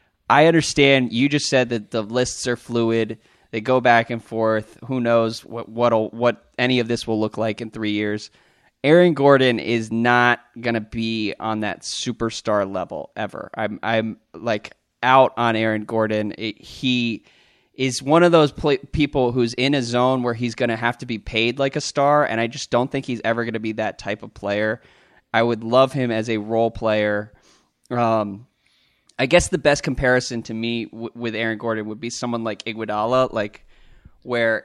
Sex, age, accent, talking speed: male, 20-39, American, 195 wpm